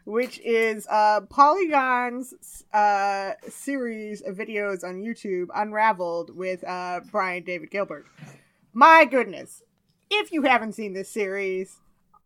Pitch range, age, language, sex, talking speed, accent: 190-255 Hz, 30-49, English, female, 120 wpm, American